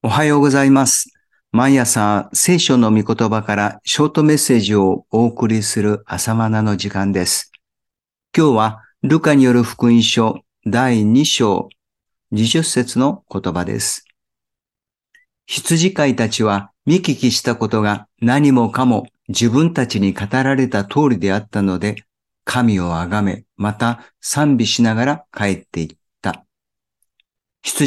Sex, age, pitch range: male, 50-69, 105-140 Hz